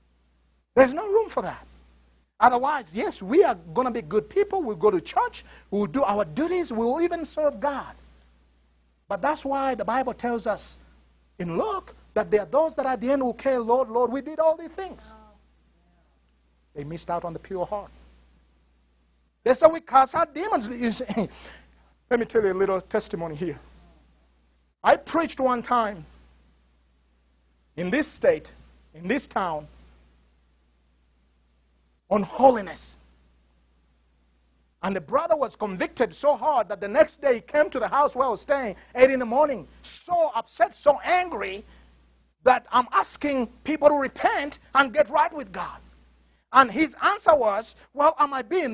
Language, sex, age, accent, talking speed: English, male, 50-69, Nigerian, 165 wpm